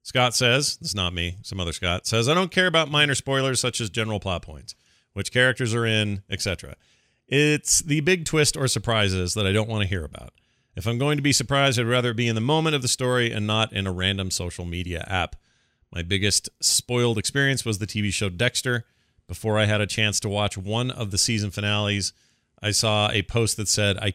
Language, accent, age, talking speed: English, American, 40-59, 225 wpm